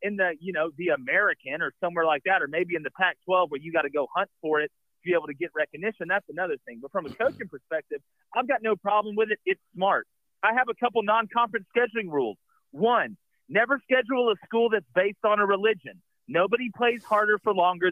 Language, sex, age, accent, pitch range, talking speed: English, male, 40-59, American, 180-240 Hz, 225 wpm